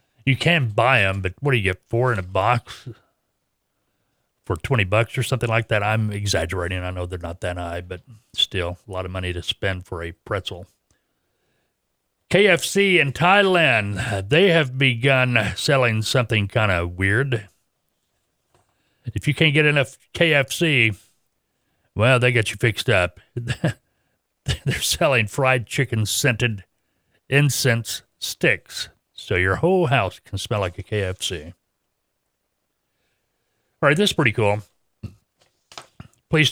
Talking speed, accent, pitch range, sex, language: 140 wpm, American, 100-130 Hz, male, English